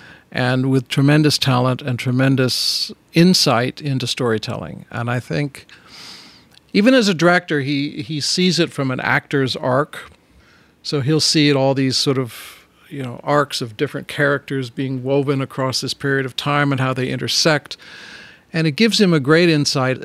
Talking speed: 170 wpm